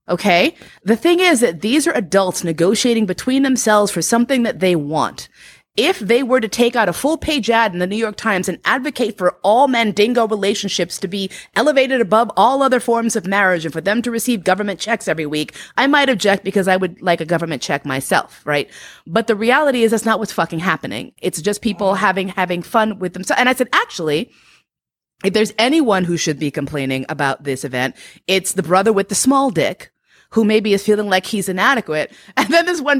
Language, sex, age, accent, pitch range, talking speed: English, female, 30-49, American, 195-255 Hz, 210 wpm